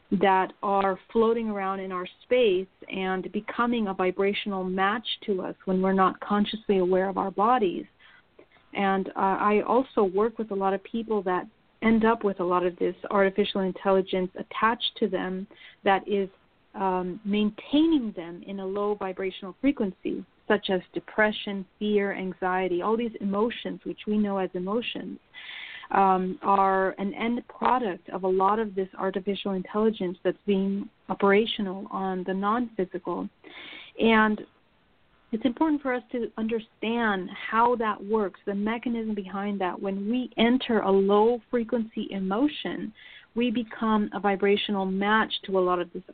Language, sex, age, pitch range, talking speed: English, female, 40-59, 190-225 Hz, 150 wpm